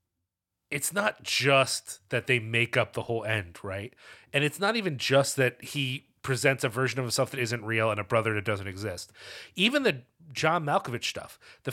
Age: 30-49